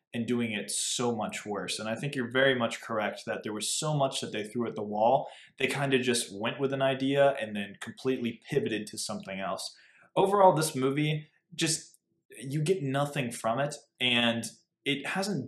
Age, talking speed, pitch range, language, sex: 20-39, 200 wpm, 110-140 Hz, English, male